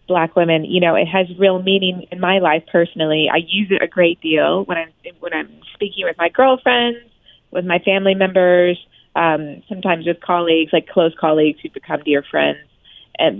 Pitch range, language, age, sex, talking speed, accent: 170-210 Hz, English, 30-49, female, 190 wpm, American